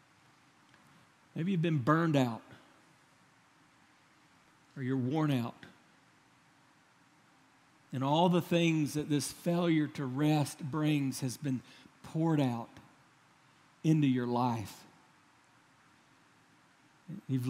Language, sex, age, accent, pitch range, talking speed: English, male, 50-69, American, 135-180 Hz, 95 wpm